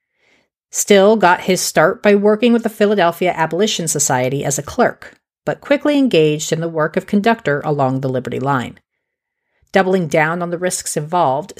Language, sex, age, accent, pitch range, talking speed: English, female, 40-59, American, 155-220 Hz, 165 wpm